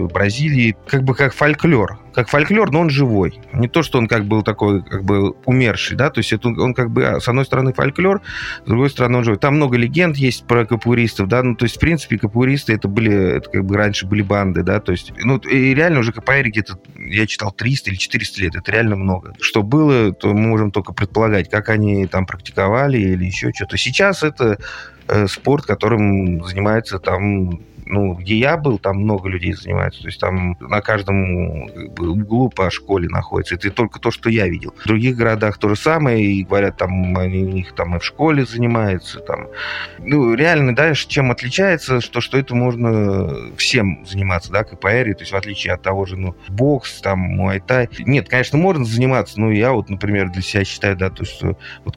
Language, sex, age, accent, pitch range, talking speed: Russian, male, 30-49, native, 95-125 Hz, 205 wpm